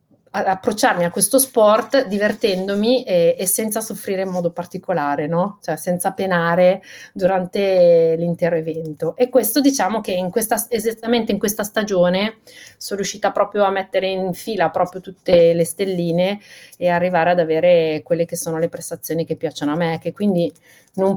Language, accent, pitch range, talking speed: Italian, native, 170-210 Hz, 160 wpm